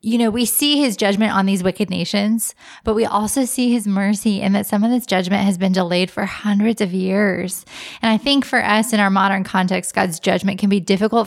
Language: English